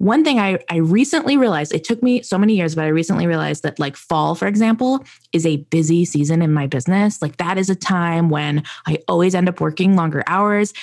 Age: 20-39